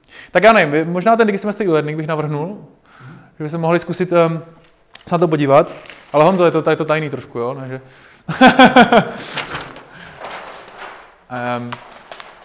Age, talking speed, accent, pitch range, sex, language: 20-39, 145 wpm, native, 155-190 Hz, male, Czech